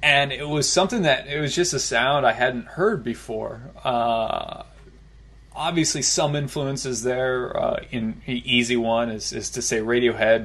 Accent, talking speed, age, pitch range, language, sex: American, 165 wpm, 20-39, 115-140 Hz, English, male